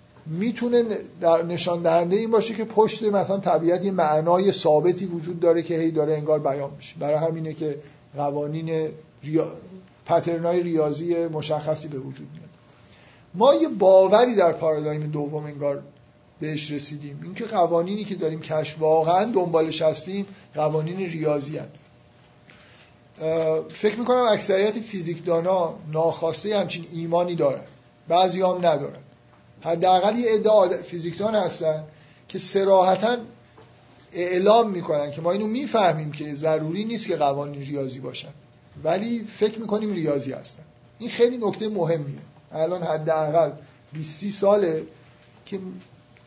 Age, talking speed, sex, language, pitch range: 50-69, 125 wpm, male, Persian, 150-195 Hz